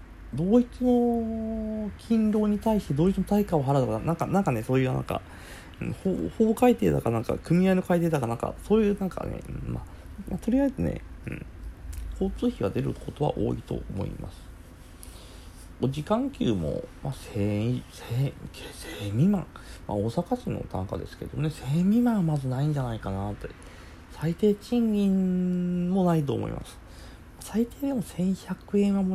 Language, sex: Japanese, male